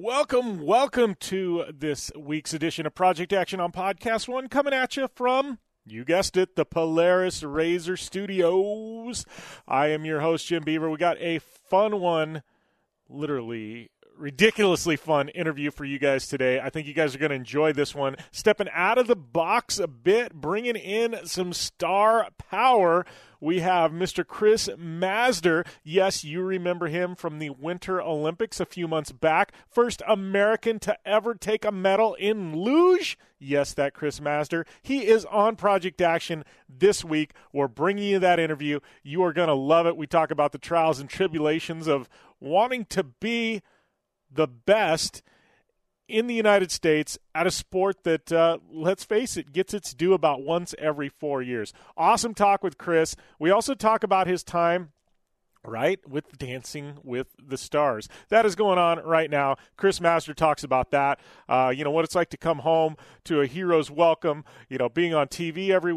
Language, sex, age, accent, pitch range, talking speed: English, male, 30-49, American, 155-195 Hz, 175 wpm